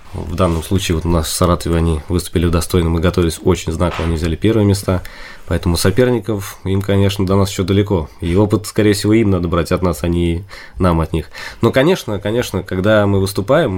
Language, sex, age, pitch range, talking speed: Russian, male, 20-39, 90-100 Hz, 205 wpm